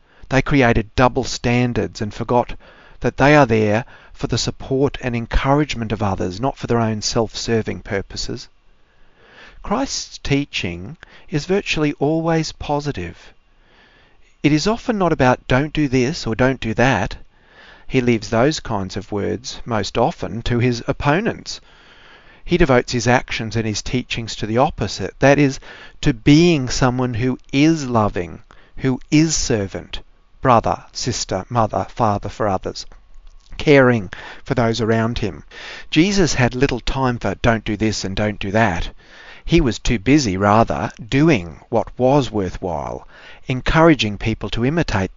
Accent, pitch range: Australian, 105-140 Hz